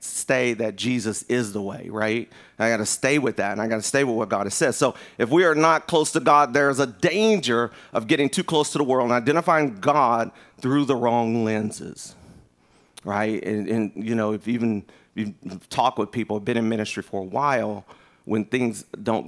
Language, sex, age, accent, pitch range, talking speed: English, male, 40-59, American, 105-135 Hz, 210 wpm